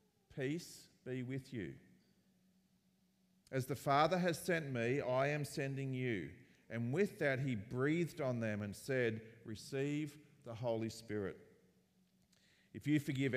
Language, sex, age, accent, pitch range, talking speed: English, male, 40-59, Australian, 120-155 Hz, 135 wpm